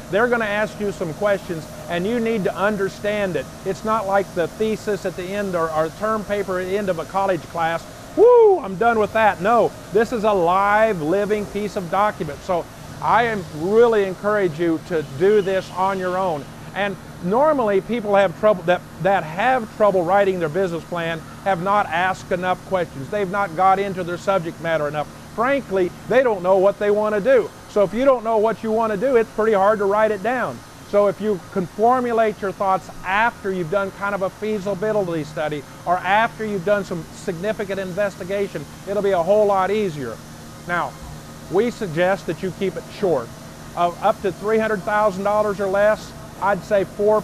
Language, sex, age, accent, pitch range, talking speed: English, male, 50-69, American, 180-210 Hz, 195 wpm